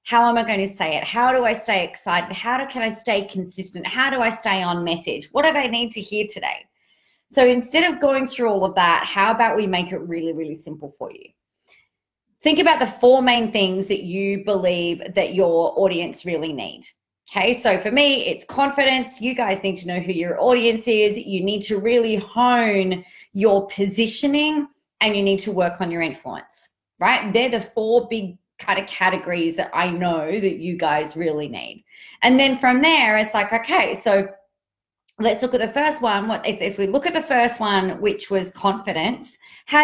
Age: 30-49